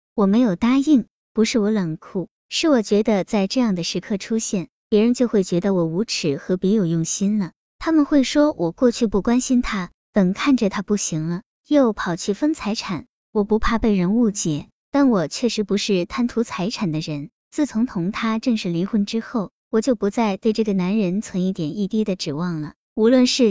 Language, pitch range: Chinese, 185-240 Hz